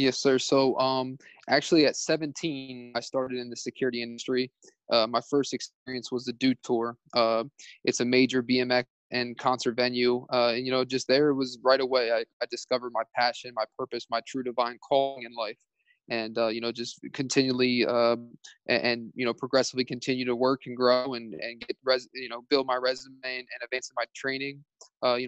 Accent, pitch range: American, 120-130 Hz